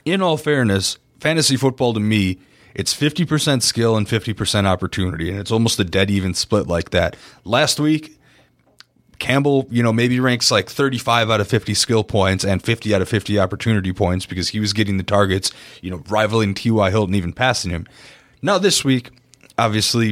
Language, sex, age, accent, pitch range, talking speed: English, male, 30-49, American, 100-125 Hz, 180 wpm